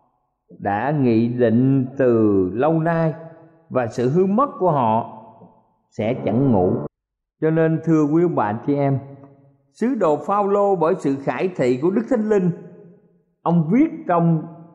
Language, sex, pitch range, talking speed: Vietnamese, male, 135-195 Hz, 145 wpm